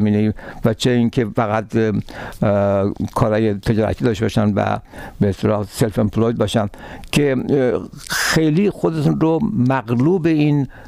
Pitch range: 105-130 Hz